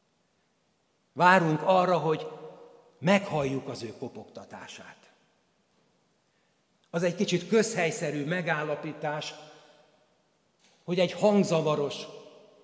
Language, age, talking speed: Hungarian, 60-79, 70 wpm